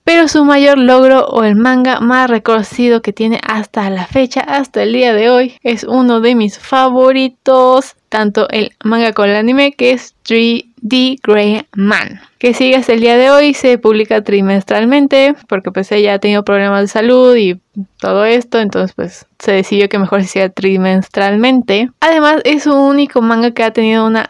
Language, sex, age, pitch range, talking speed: Spanish, female, 20-39, 210-255 Hz, 180 wpm